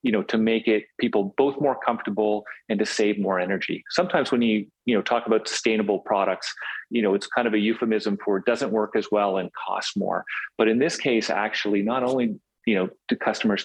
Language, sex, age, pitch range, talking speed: English, male, 30-49, 95-110 Hz, 220 wpm